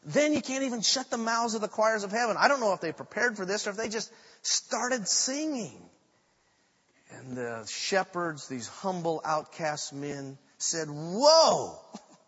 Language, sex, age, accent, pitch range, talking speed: English, male, 40-59, American, 145-225 Hz, 170 wpm